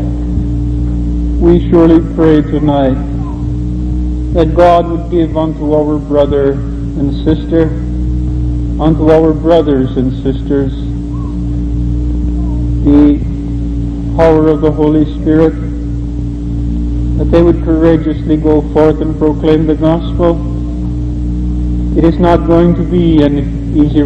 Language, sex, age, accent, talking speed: English, male, 50-69, American, 105 wpm